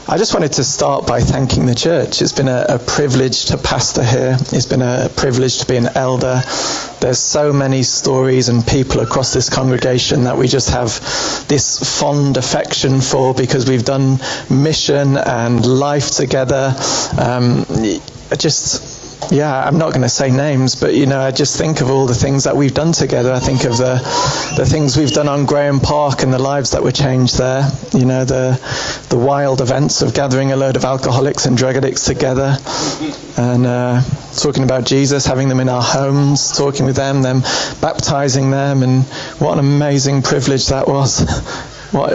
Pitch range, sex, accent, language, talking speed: 130-140 Hz, male, British, English, 185 wpm